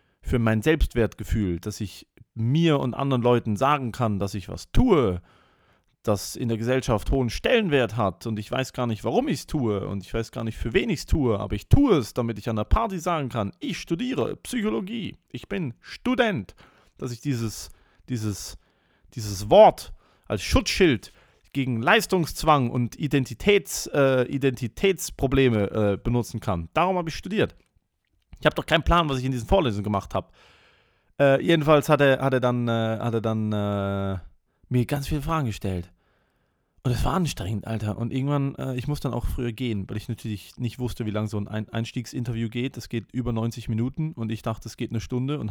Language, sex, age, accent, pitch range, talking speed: English, male, 30-49, German, 105-135 Hz, 190 wpm